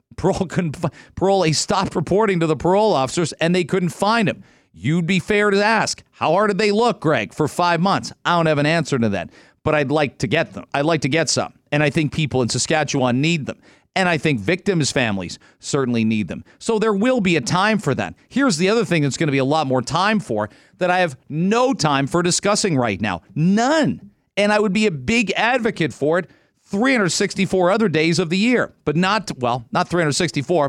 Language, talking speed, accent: English, 225 wpm, American